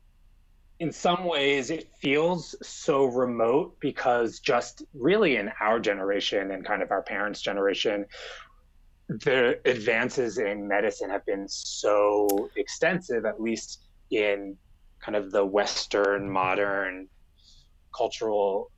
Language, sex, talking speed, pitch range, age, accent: English, male, 115 wpm, 85-125 Hz, 30-49, American